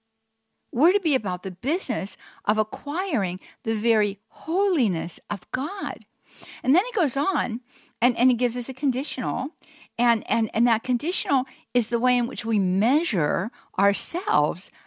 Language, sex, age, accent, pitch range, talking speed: English, female, 60-79, American, 215-300 Hz, 155 wpm